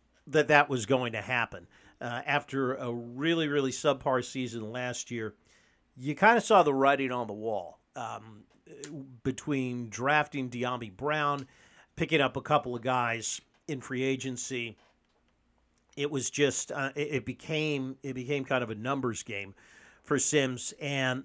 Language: English